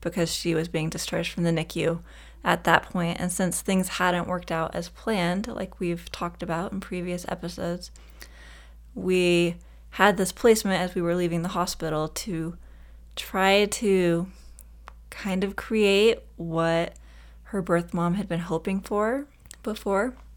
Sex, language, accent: female, English, American